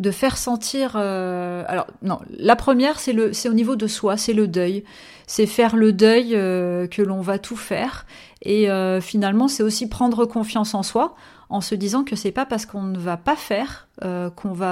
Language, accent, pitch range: French, French, 185-235 Hz